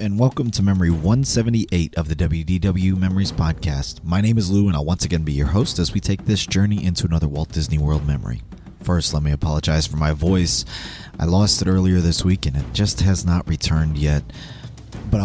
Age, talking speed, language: 30-49, 210 wpm, English